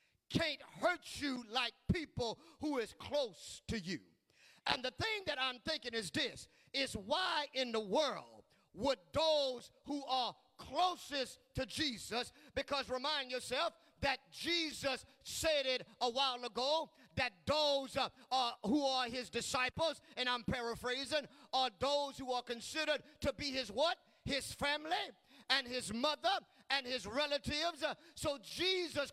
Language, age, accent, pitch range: English, 50-69, American, 240-300 Hz